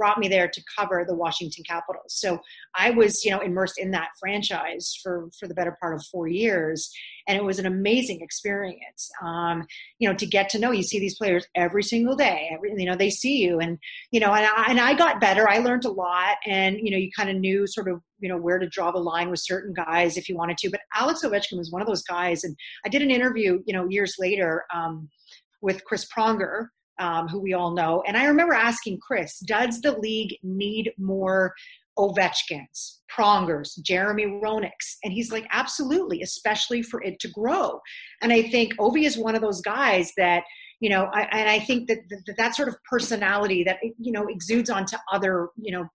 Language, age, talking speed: English, 30-49, 215 wpm